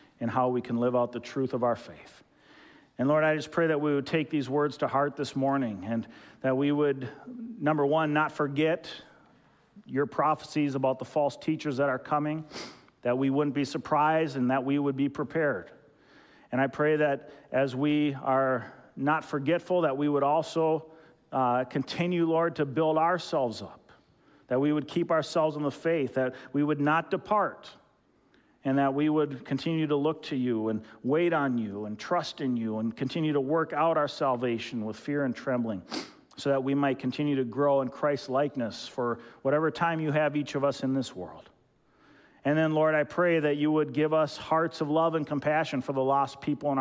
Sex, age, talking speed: male, 40-59, 200 wpm